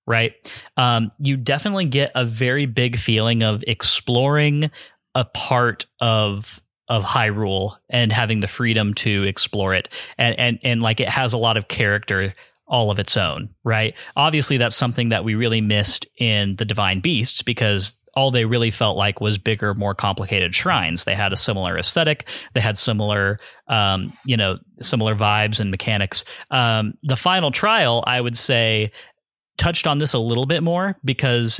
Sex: male